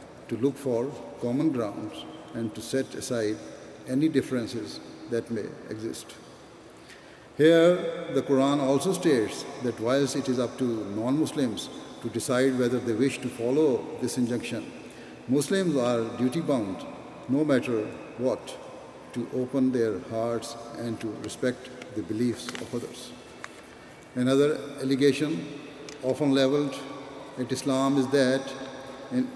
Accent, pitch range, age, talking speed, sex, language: Indian, 125-145 Hz, 60-79, 125 wpm, male, English